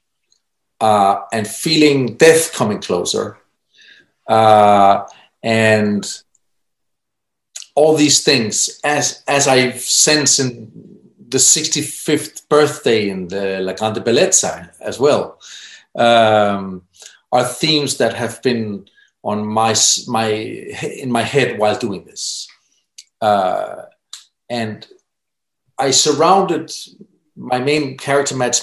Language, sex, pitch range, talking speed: English, male, 110-145 Hz, 105 wpm